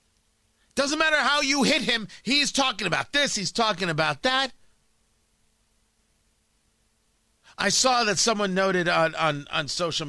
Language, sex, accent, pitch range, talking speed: English, male, American, 195-250 Hz, 135 wpm